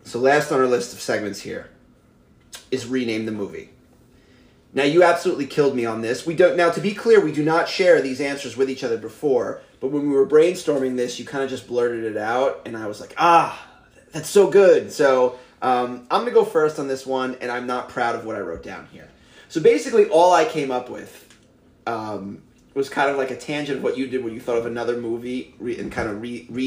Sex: male